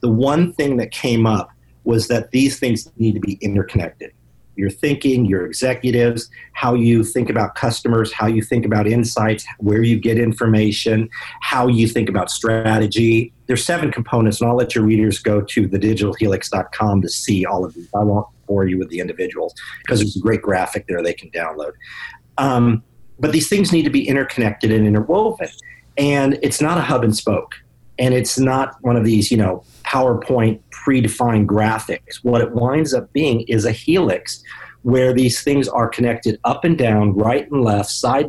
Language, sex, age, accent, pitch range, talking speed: English, male, 40-59, American, 110-130 Hz, 180 wpm